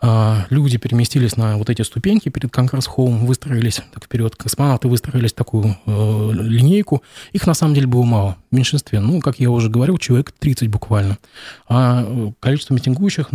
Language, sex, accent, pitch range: Russian, male, native, 115-135 Hz